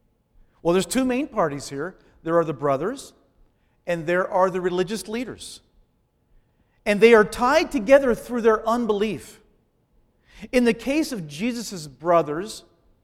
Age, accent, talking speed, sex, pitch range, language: 40-59, American, 140 wpm, male, 190-270 Hz, English